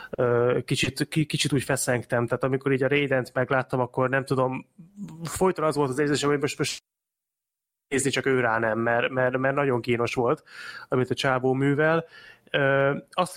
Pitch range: 120-145 Hz